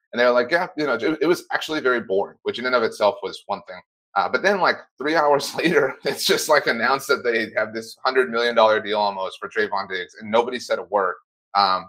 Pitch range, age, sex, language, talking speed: 100-135 Hz, 30-49, male, English, 240 wpm